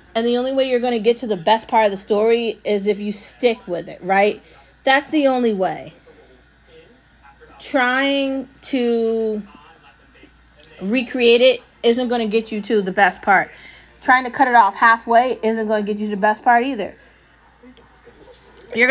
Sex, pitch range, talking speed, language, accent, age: female, 205-245 Hz, 180 wpm, English, American, 30-49